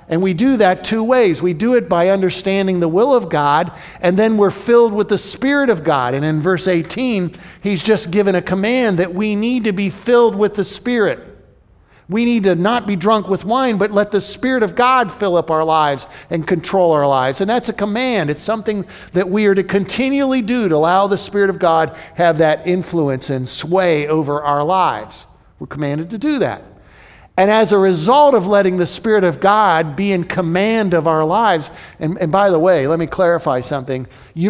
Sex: male